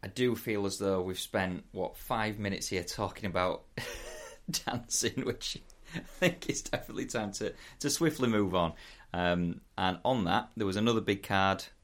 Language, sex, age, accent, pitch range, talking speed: English, male, 30-49, British, 80-100 Hz, 170 wpm